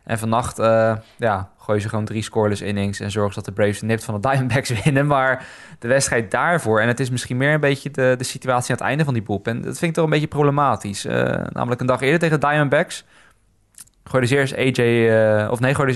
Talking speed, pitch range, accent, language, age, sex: 230 wpm, 110-135 Hz, Dutch, Dutch, 20-39, male